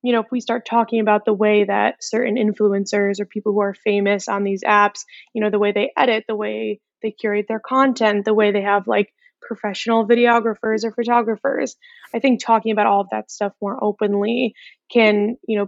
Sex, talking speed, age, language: female, 205 wpm, 10-29, English